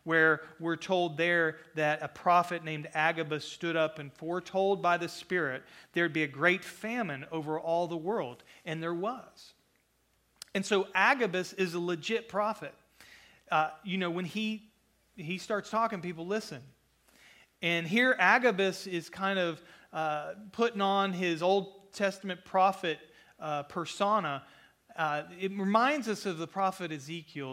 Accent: American